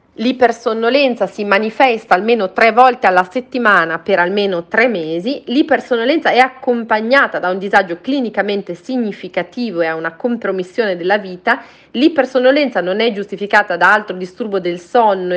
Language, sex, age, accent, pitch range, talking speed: Italian, female, 30-49, native, 180-240 Hz, 135 wpm